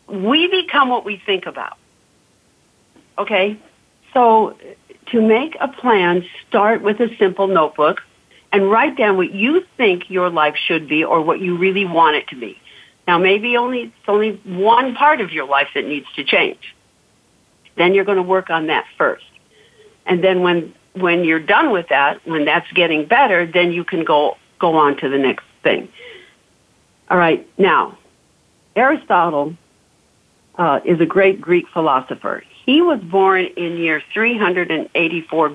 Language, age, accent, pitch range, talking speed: English, 50-69, American, 175-240 Hz, 160 wpm